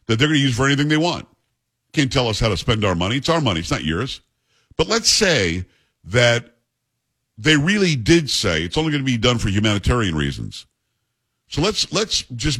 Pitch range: 115-155 Hz